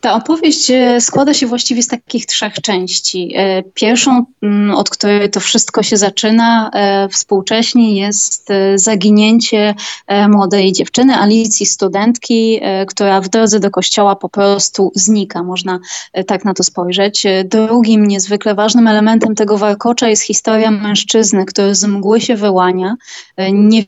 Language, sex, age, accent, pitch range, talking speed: Polish, female, 20-39, native, 195-225 Hz, 130 wpm